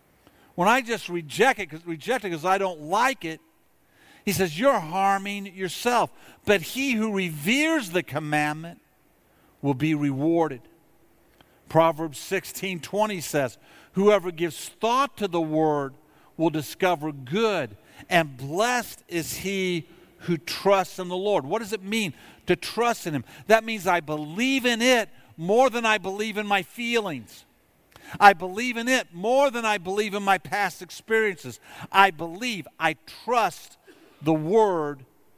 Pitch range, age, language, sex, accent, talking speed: 150-205 Hz, 50-69, English, male, American, 145 wpm